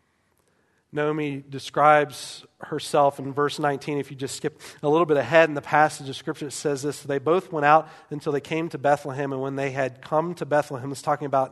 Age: 40-59